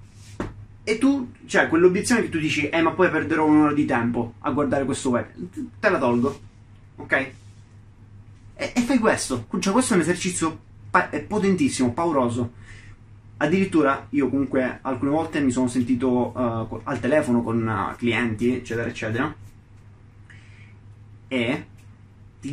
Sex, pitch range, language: male, 110-150 Hz, Italian